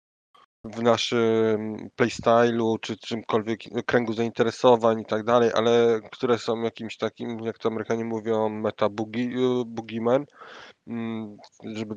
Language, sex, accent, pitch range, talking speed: Polish, male, native, 105-125 Hz, 105 wpm